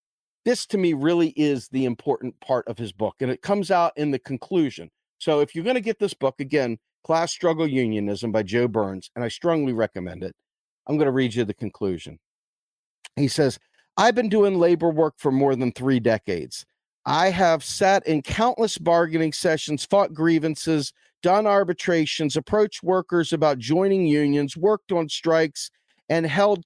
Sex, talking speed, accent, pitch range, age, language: male, 170 wpm, American, 130-185 Hz, 50-69, English